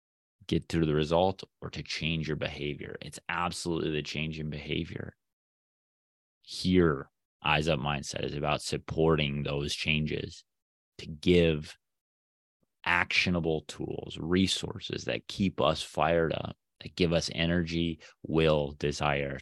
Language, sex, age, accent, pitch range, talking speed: English, male, 30-49, American, 70-85 Hz, 125 wpm